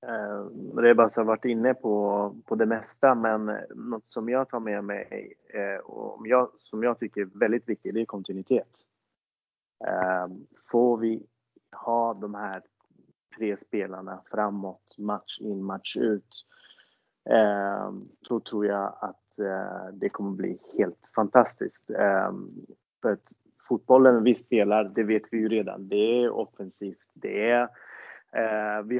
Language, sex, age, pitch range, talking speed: Swedish, male, 30-49, 100-120 Hz, 145 wpm